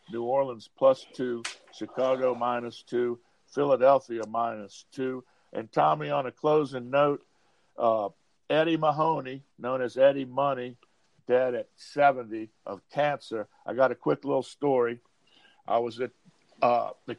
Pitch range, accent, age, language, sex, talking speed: 125-150 Hz, American, 50-69, English, male, 135 wpm